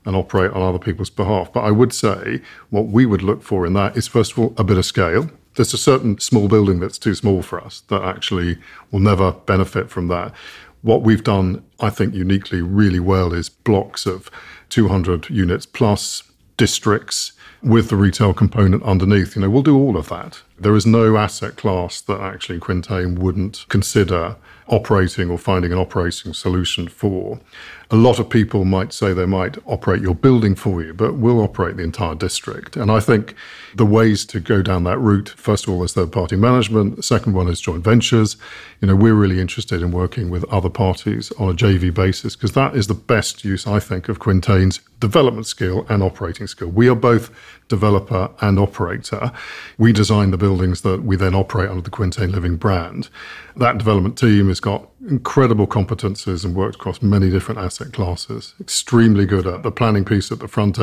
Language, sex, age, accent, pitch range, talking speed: English, male, 50-69, British, 95-110 Hz, 195 wpm